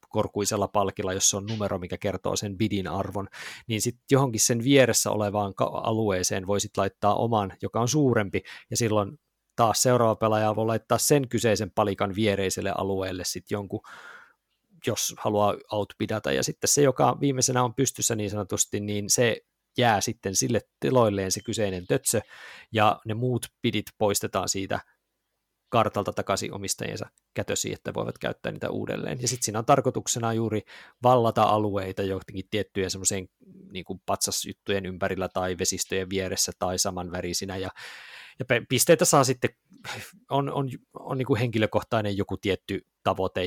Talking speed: 145 wpm